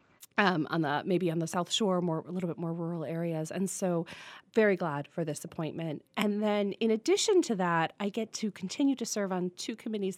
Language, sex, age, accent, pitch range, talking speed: English, female, 30-49, American, 165-205 Hz, 220 wpm